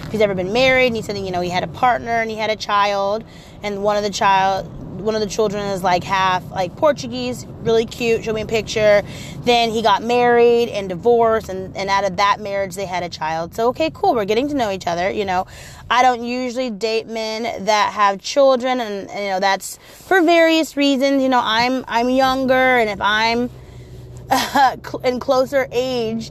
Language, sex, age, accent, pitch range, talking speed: English, female, 20-39, American, 205-260 Hz, 215 wpm